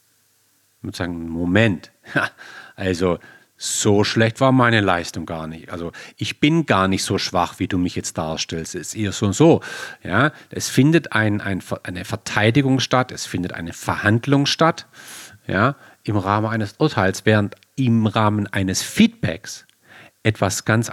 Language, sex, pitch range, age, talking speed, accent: German, male, 105-160 Hz, 40-59, 160 wpm, German